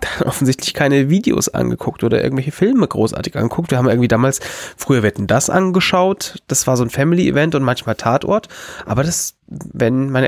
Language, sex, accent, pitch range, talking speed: German, male, German, 130-165 Hz, 170 wpm